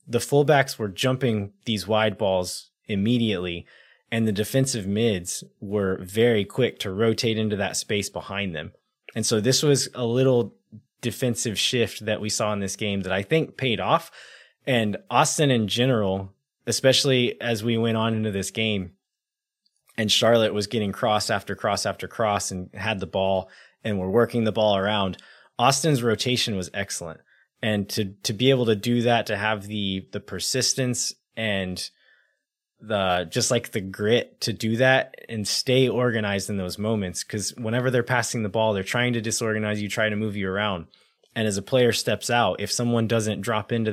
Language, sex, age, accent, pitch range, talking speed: English, male, 20-39, American, 100-120 Hz, 180 wpm